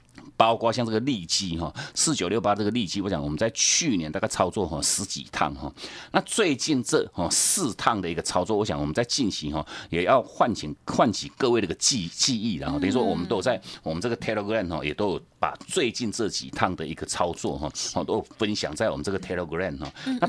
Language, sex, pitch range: Chinese, male, 85-115 Hz